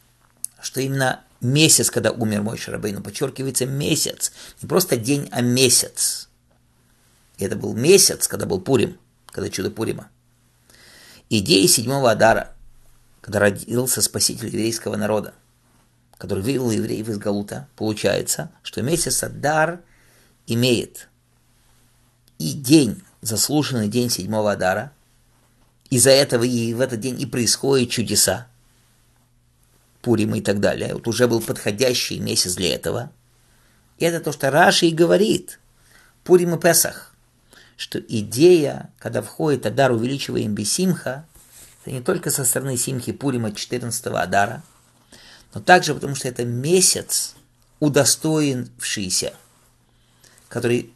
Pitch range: 115-135 Hz